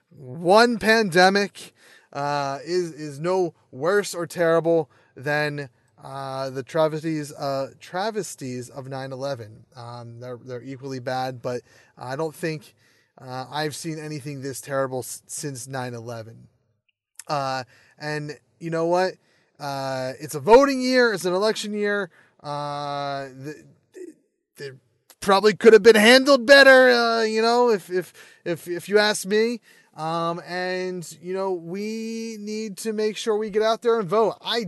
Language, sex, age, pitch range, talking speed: English, male, 20-39, 135-190 Hz, 150 wpm